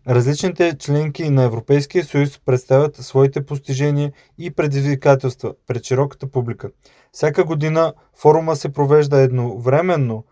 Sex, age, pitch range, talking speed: male, 20-39, 130-145 Hz, 110 wpm